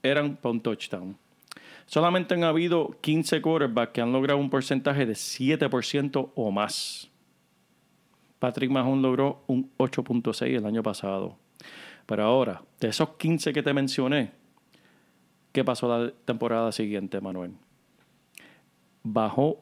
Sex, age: male, 40-59